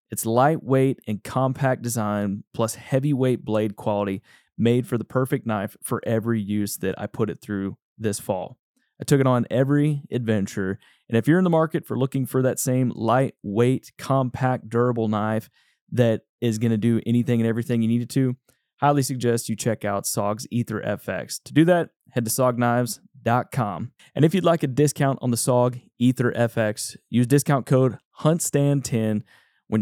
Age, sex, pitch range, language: 20-39, male, 105-130 Hz, English